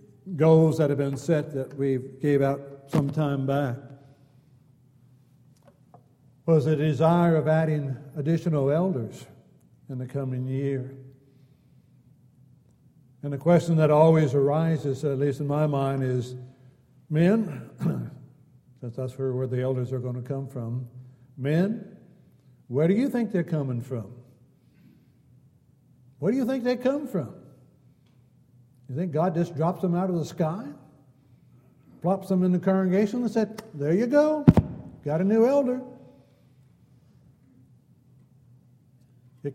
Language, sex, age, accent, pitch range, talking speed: English, male, 60-79, American, 130-165 Hz, 130 wpm